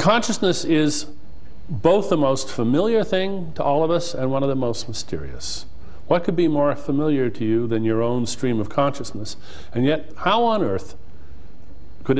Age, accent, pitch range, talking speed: 50-69, American, 100-160 Hz, 175 wpm